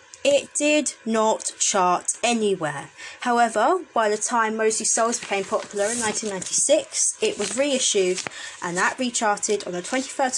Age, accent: 20-39, British